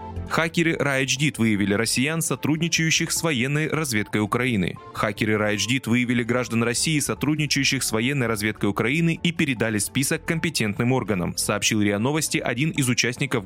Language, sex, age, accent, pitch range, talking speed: Russian, male, 20-39, native, 110-150 Hz, 135 wpm